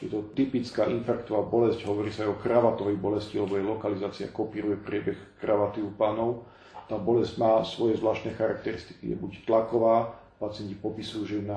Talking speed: 170 wpm